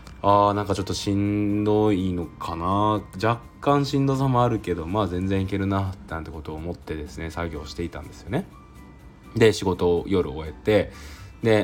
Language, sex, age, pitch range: Japanese, male, 20-39, 85-105 Hz